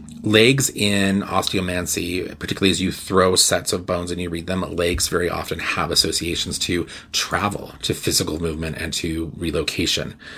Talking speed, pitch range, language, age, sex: 155 wpm, 85-105 Hz, English, 30-49, male